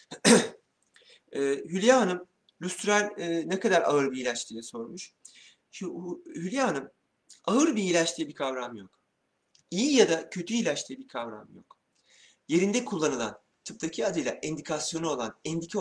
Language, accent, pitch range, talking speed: Turkish, native, 130-180 Hz, 135 wpm